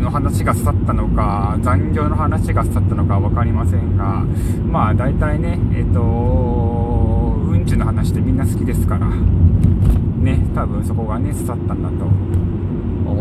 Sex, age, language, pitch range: male, 20-39, Japanese, 90-110 Hz